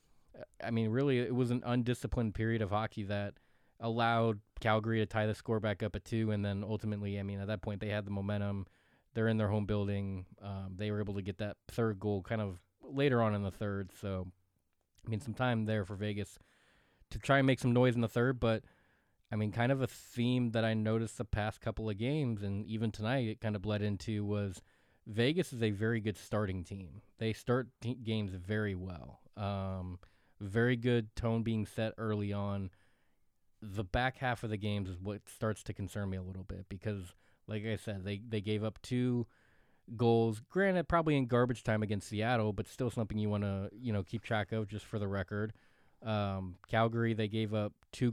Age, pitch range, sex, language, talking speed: 20-39, 100-115 Hz, male, English, 210 wpm